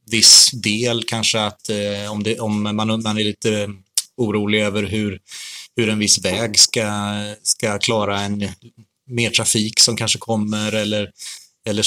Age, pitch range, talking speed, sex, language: 30-49, 100-110 Hz, 150 wpm, male, Swedish